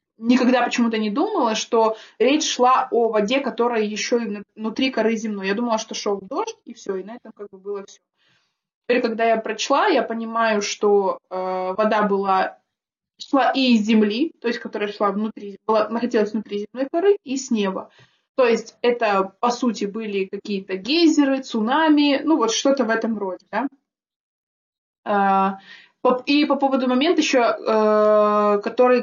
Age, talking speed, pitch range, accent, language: 20-39, 160 wpm, 205-255 Hz, native, Russian